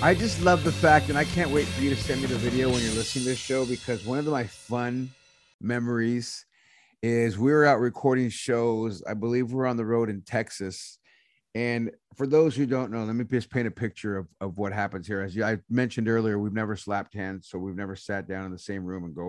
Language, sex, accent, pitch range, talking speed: English, male, American, 100-130 Hz, 245 wpm